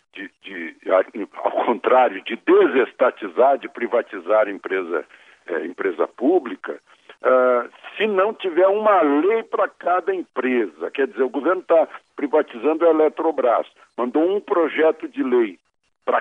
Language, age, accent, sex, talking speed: Portuguese, 60-79, Brazilian, male, 115 wpm